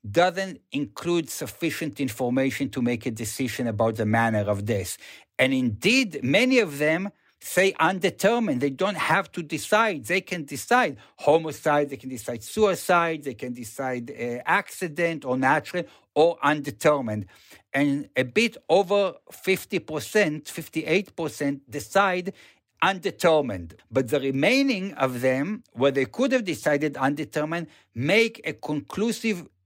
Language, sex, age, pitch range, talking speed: English, male, 60-79, 130-185 Hz, 130 wpm